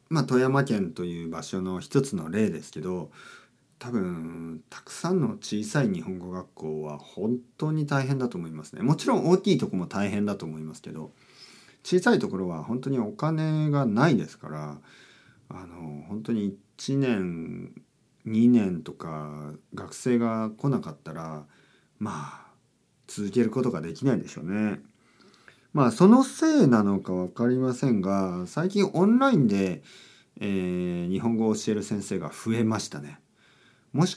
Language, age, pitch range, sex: Japanese, 40-59, 80-125 Hz, male